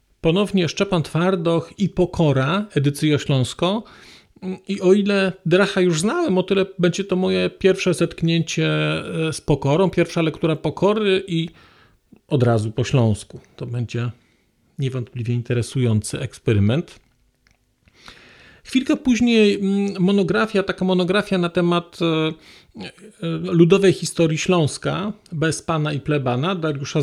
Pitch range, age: 145-195 Hz, 40-59